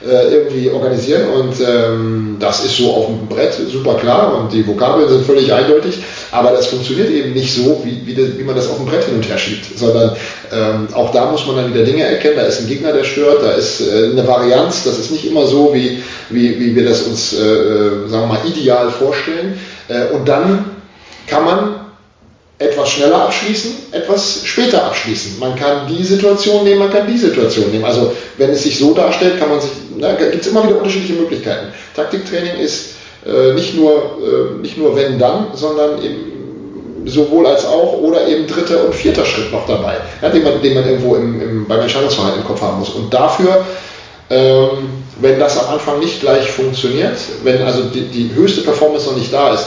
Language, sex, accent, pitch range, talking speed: German, male, German, 115-155 Hz, 205 wpm